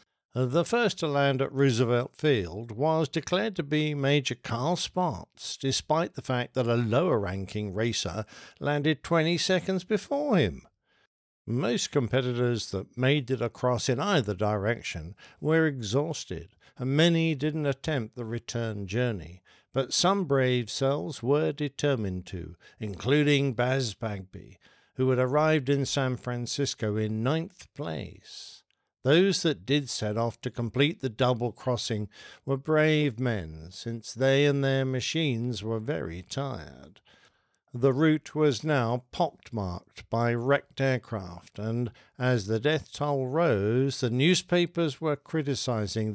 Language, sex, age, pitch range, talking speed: English, male, 60-79, 110-150 Hz, 130 wpm